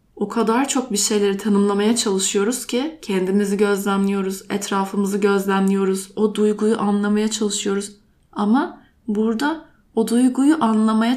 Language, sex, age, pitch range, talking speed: Turkish, female, 20-39, 205-255 Hz, 115 wpm